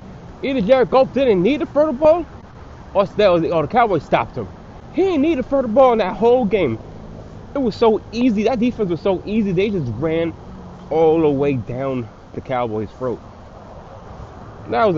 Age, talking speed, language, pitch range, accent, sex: 20-39, 185 wpm, English, 120-195 Hz, American, male